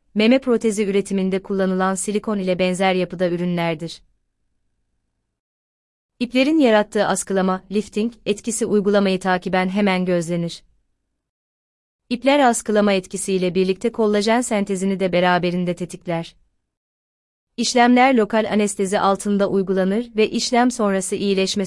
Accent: native